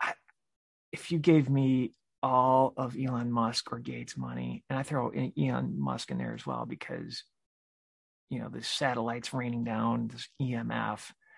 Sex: male